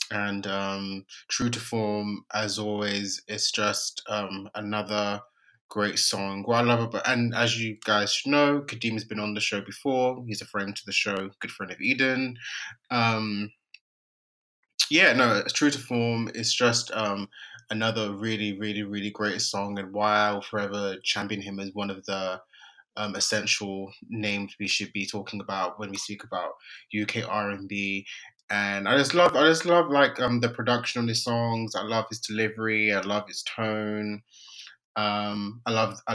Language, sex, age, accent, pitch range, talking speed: English, male, 20-39, British, 100-115 Hz, 170 wpm